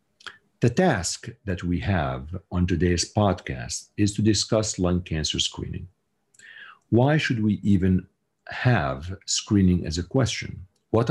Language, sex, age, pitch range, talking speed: English, male, 50-69, 90-110 Hz, 130 wpm